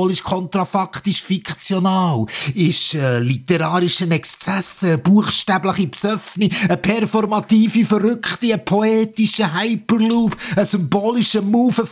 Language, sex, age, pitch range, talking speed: German, male, 50-69, 125-185 Hz, 80 wpm